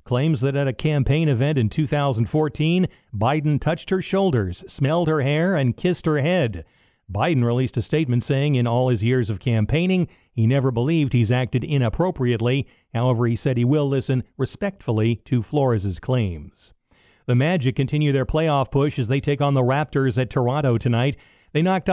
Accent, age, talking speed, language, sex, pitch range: American, 50-69, 170 wpm, English, male, 125-165 Hz